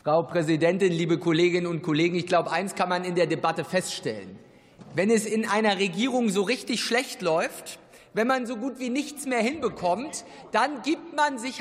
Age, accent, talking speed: 50-69, German, 185 wpm